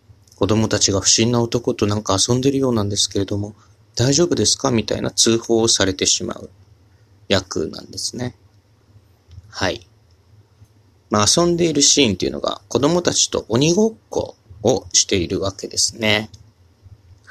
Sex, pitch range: male, 100-115 Hz